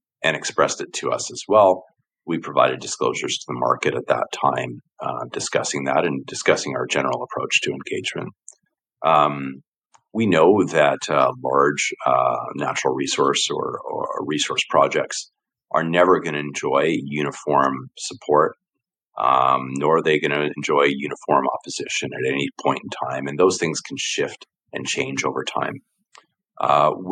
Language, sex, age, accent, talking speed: English, male, 40-59, American, 155 wpm